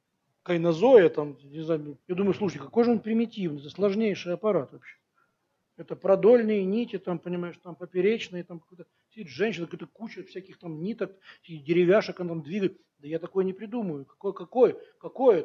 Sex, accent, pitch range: male, native, 180-245 Hz